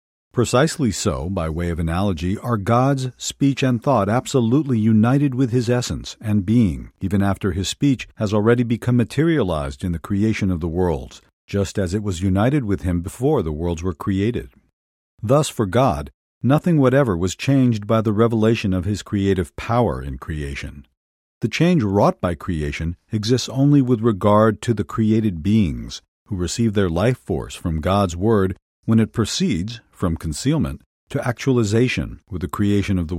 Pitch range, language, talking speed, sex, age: 90-120 Hz, English, 170 wpm, male, 50-69